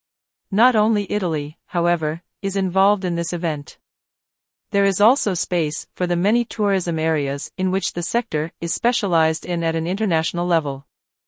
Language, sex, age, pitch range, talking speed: English, female, 40-59, 165-200 Hz, 155 wpm